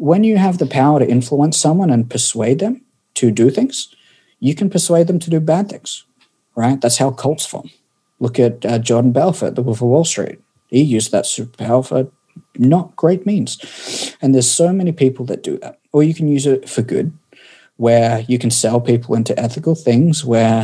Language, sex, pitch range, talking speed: English, male, 120-160 Hz, 200 wpm